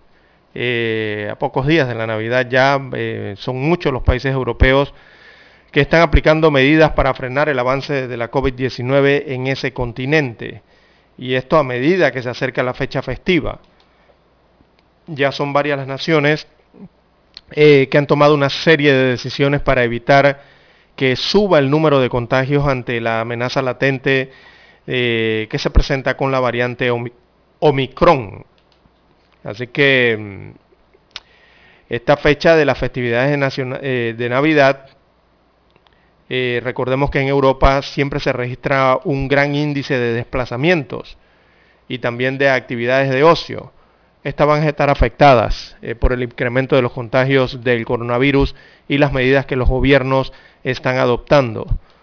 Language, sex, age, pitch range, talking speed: Spanish, male, 40-59, 125-140 Hz, 140 wpm